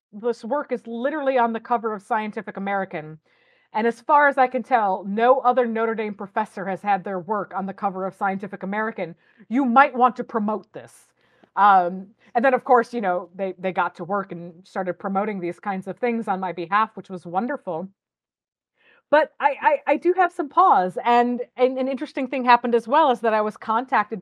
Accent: American